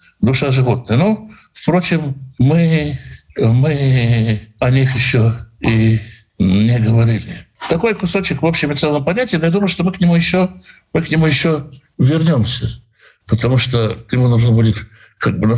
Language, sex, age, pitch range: Russian, male, 60-79, 115-180 Hz